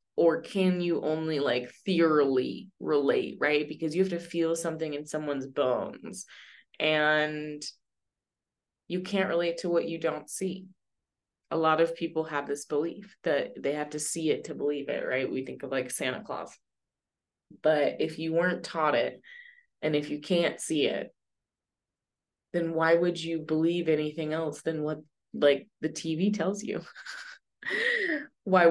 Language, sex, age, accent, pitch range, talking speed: English, female, 20-39, American, 145-175 Hz, 160 wpm